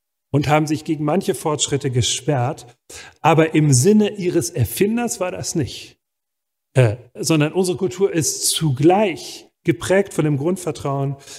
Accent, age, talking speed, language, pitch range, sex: German, 40-59, 130 wpm, German, 135-170 Hz, male